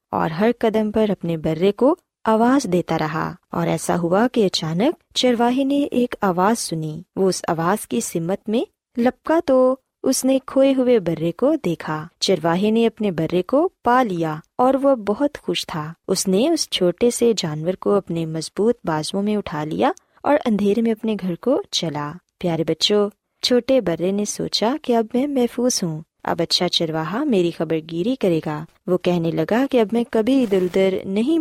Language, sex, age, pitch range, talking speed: Urdu, female, 20-39, 170-240 Hz, 180 wpm